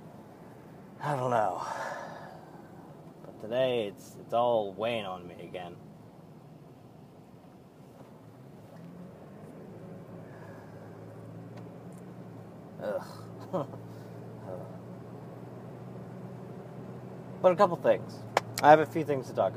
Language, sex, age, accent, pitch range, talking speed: English, male, 30-49, American, 115-150 Hz, 75 wpm